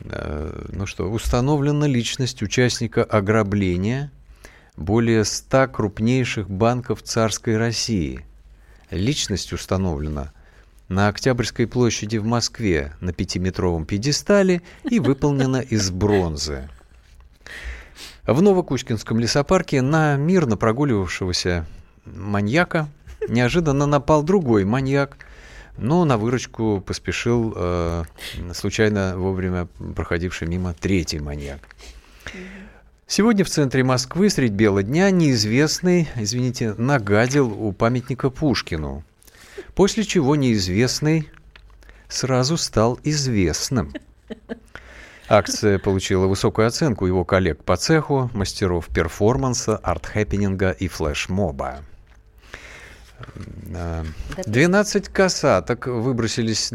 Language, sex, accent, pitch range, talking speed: Russian, male, native, 95-130 Hz, 90 wpm